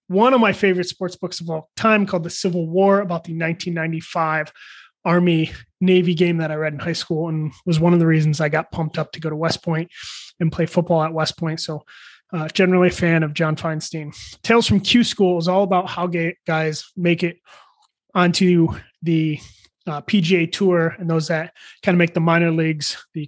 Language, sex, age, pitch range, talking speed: English, male, 20-39, 160-195 Hz, 210 wpm